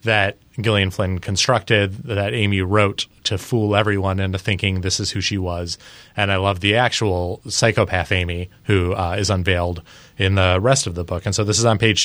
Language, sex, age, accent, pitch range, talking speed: English, male, 30-49, American, 100-125 Hz, 200 wpm